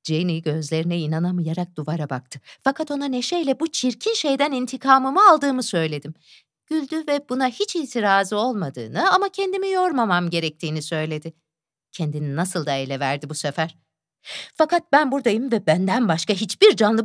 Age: 50-69